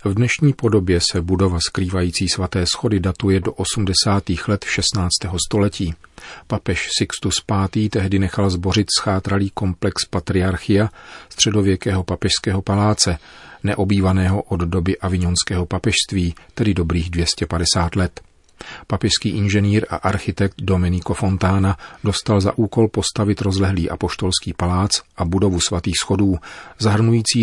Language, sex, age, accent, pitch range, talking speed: Czech, male, 40-59, native, 90-105 Hz, 115 wpm